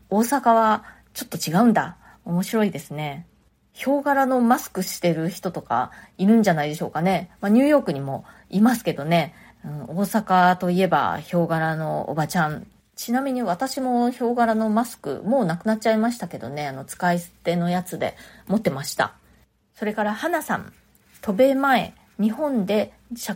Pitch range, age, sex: 175-230 Hz, 20-39, female